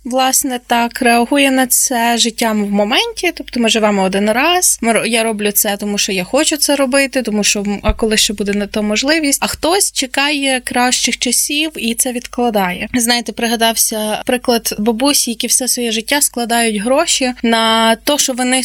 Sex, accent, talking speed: female, native, 170 wpm